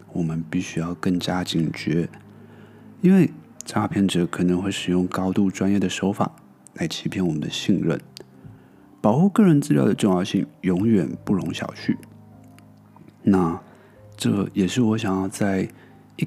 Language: Chinese